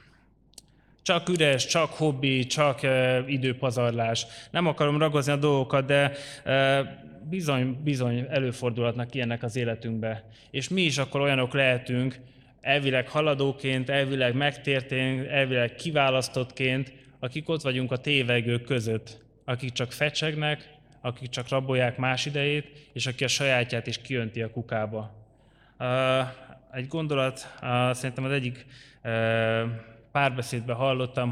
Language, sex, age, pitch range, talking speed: Hungarian, male, 20-39, 120-135 Hz, 125 wpm